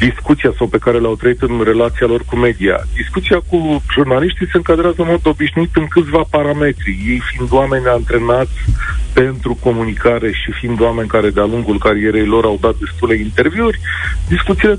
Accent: native